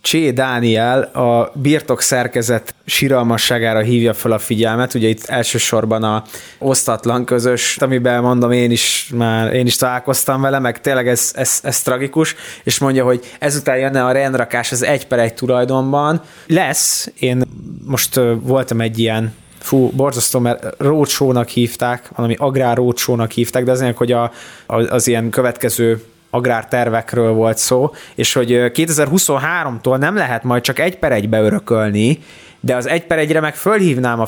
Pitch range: 120-140 Hz